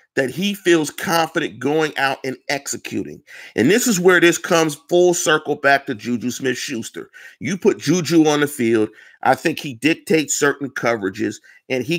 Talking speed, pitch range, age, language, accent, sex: 170 wpm, 130-165 Hz, 40-59, English, American, male